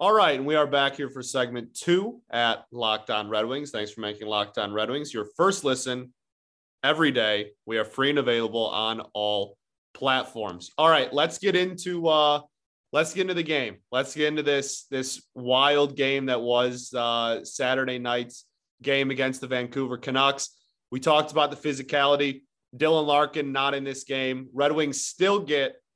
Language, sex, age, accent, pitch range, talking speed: English, male, 30-49, American, 125-155 Hz, 175 wpm